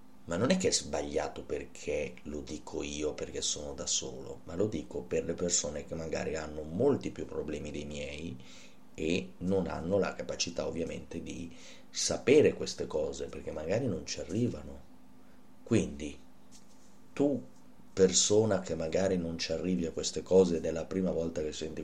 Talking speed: 170 wpm